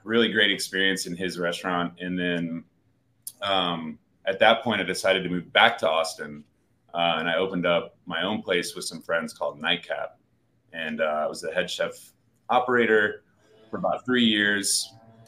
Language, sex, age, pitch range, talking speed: English, male, 30-49, 90-115 Hz, 175 wpm